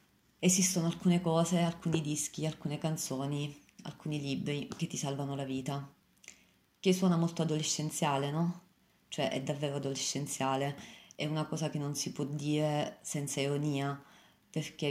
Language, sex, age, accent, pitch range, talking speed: Italian, female, 30-49, native, 140-155 Hz, 135 wpm